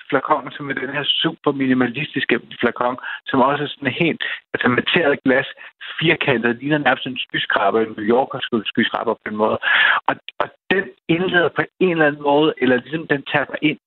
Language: Danish